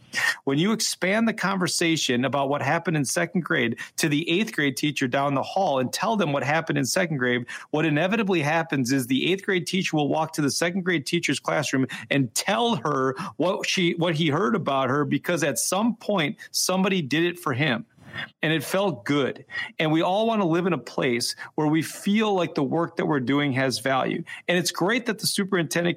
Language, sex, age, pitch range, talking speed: English, male, 40-59, 140-180 Hz, 215 wpm